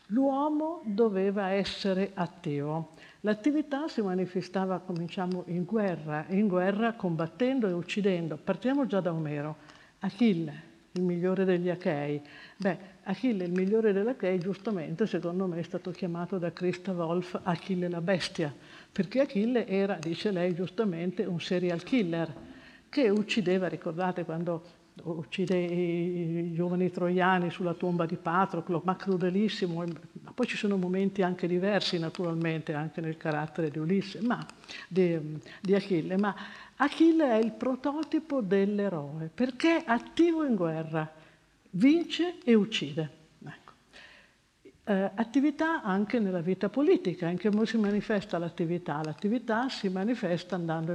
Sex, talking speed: female, 135 wpm